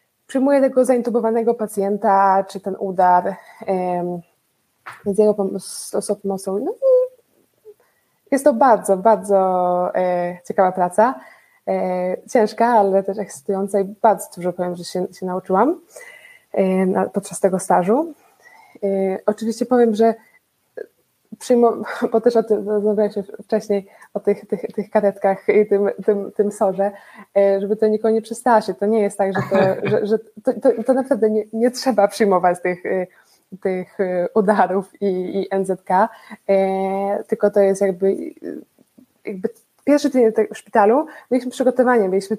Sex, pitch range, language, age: female, 195-230 Hz, Polish, 20-39